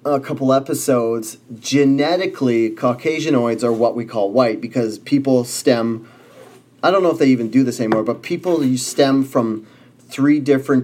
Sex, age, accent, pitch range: male, 30-49, American, 115-135 Hz